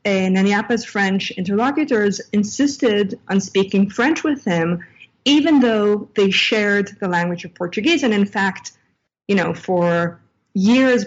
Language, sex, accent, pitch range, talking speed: English, female, American, 175-220 Hz, 130 wpm